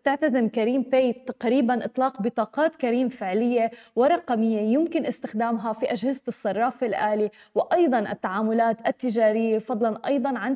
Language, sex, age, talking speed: Arabic, female, 20-39, 120 wpm